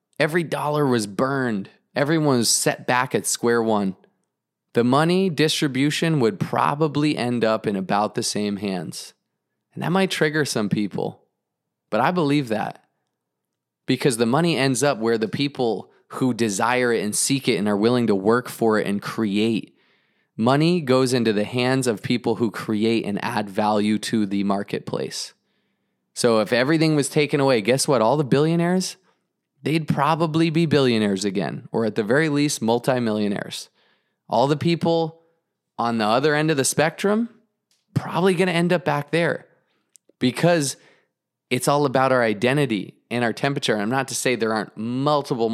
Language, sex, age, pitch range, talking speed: English, male, 20-39, 110-150 Hz, 165 wpm